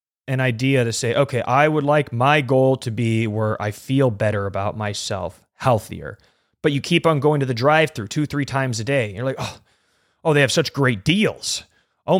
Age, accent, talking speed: 30-49, American, 210 wpm